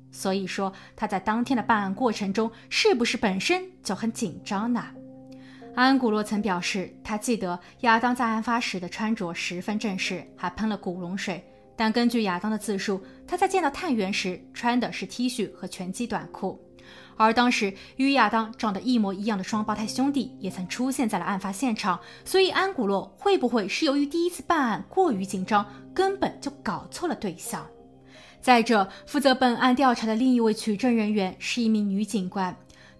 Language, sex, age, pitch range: Chinese, female, 20-39, 195-255 Hz